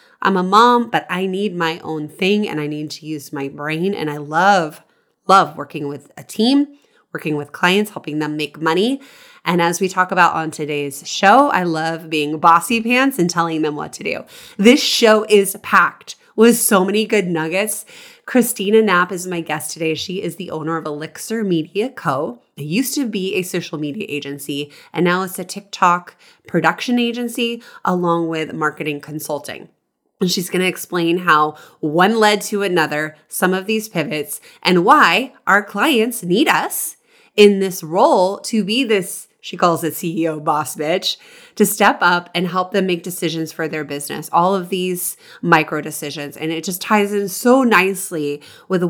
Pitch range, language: 155-205 Hz, English